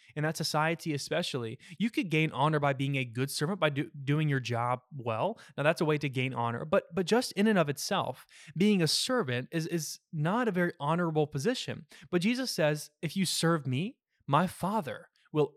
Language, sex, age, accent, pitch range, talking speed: English, male, 20-39, American, 140-185 Hz, 205 wpm